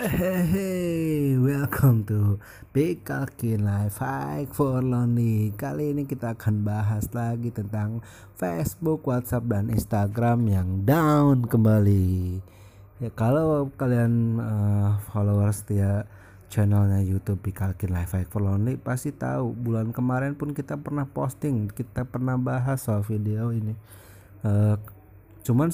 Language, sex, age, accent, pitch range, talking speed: Indonesian, male, 20-39, native, 105-135 Hz, 125 wpm